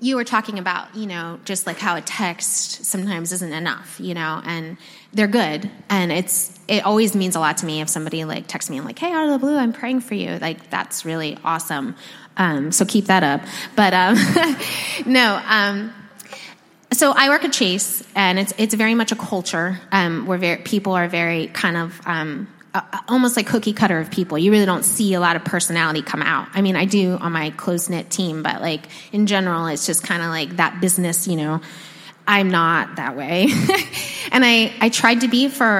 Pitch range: 170-220 Hz